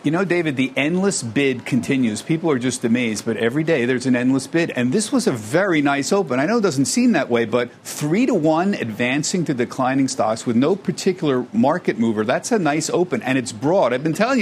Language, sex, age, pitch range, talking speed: English, male, 50-69, 130-180 Hz, 230 wpm